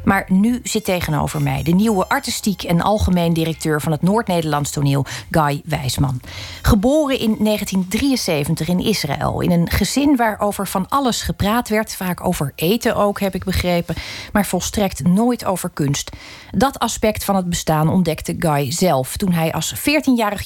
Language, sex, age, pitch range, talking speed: Dutch, female, 40-59, 155-215 Hz, 160 wpm